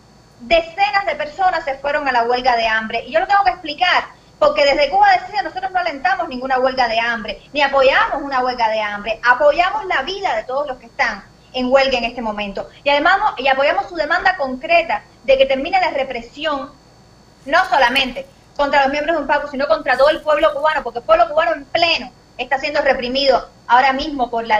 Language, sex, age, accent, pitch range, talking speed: Spanish, female, 30-49, American, 255-320 Hz, 205 wpm